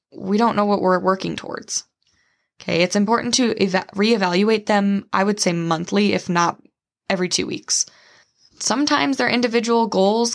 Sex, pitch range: female, 180-215 Hz